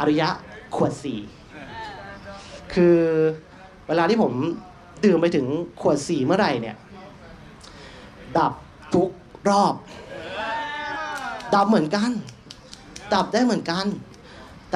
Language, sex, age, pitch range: Thai, male, 30-49, 165-230 Hz